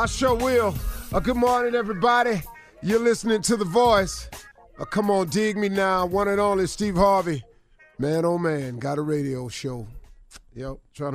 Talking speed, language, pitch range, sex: 170 wpm, English, 125-170 Hz, male